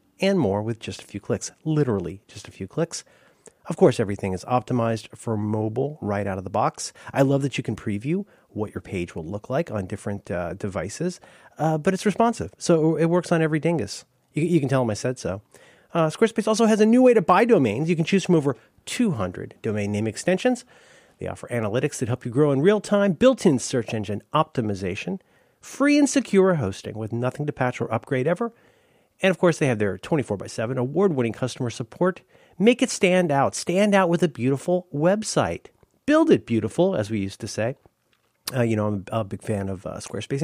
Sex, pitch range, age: male, 110-180 Hz, 40-59